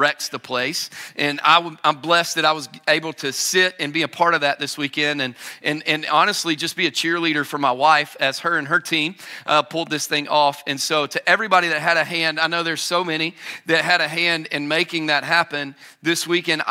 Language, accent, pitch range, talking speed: English, American, 145-170 Hz, 230 wpm